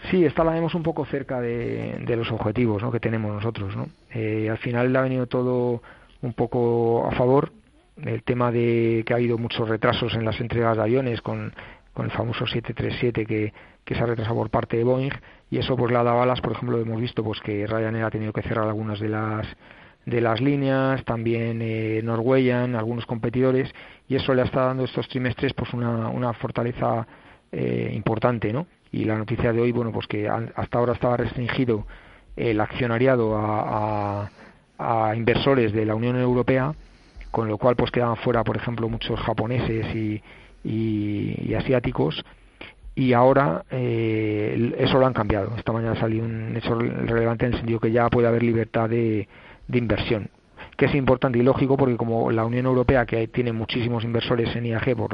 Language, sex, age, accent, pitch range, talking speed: Spanish, male, 40-59, Spanish, 110-125 Hz, 190 wpm